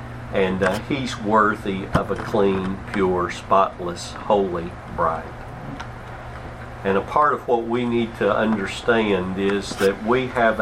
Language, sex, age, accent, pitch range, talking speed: English, male, 50-69, American, 100-120 Hz, 135 wpm